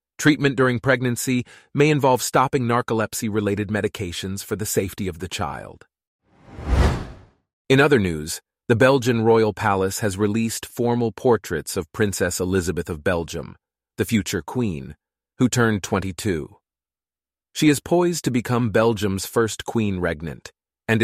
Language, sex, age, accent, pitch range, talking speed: English, male, 30-49, American, 95-125 Hz, 135 wpm